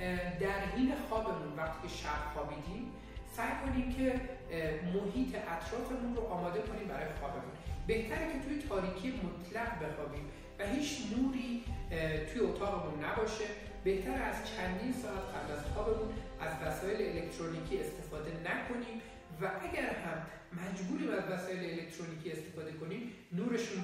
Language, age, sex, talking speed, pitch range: Persian, 40-59, male, 130 wpm, 160-220 Hz